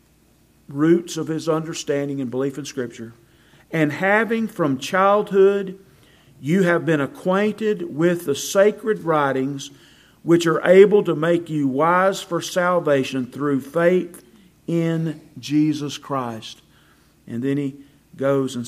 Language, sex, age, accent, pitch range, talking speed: English, male, 50-69, American, 130-170 Hz, 125 wpm